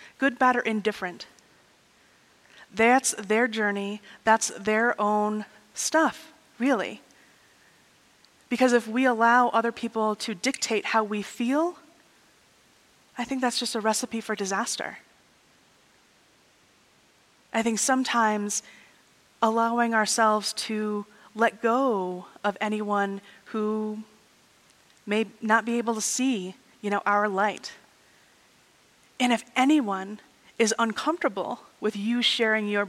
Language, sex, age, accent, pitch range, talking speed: English, female, 30-49, American, 215-255 Hz, 110 wpm